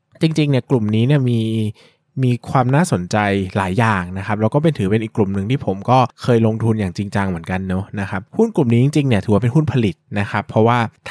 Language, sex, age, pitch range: Thai, male, 20-39, 105-135 Hz